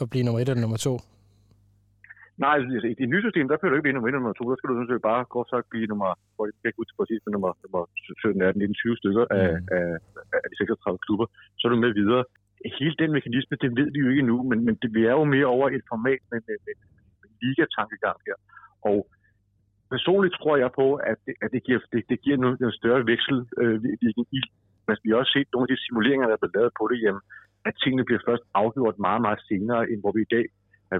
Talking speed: 215 wpm